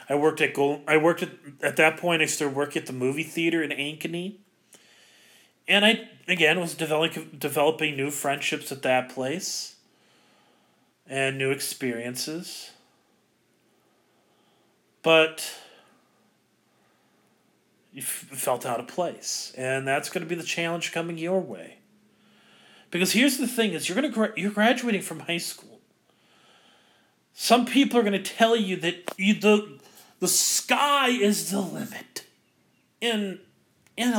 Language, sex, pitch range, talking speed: English, male, 150-215 Hz, 140 wpm